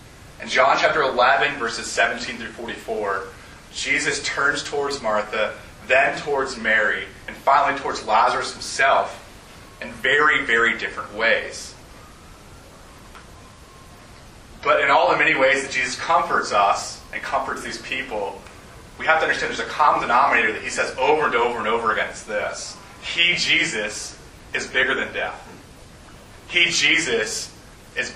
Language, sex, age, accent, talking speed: English, male, 30-49, American, 140 wpm